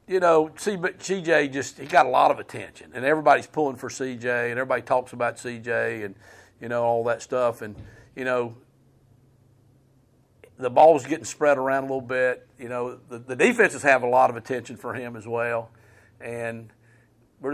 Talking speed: 185 wpm